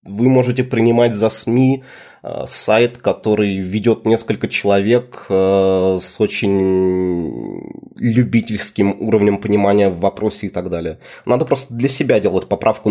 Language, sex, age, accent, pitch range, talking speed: Russian, male, 20-39, native, 95-120 Hz, 120 wpm